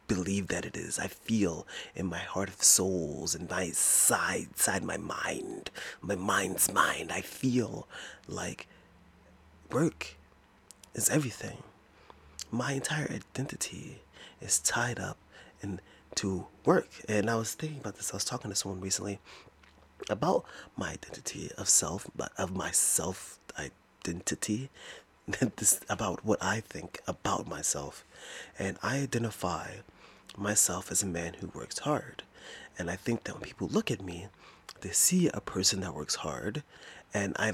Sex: male